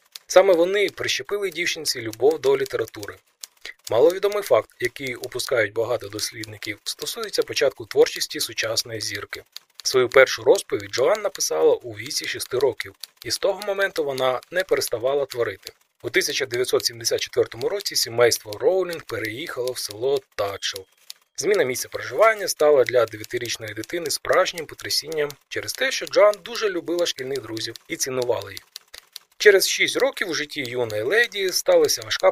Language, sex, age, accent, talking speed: Ukrainian, male, 20-39, native, 135 wpm